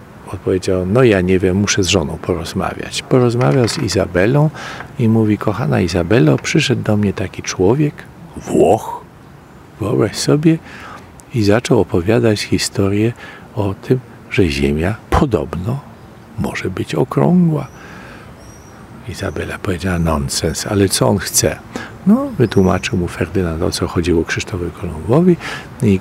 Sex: male